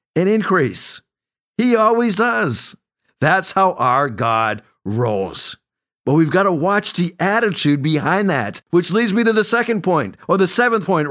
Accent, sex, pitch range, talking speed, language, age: American, male, 140-195 Hz, 160 wpm, English, 50-69